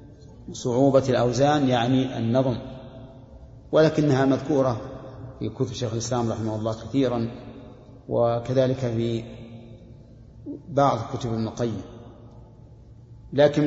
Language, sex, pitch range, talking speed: Arabic, male, 120-140 Hz, 85 wpm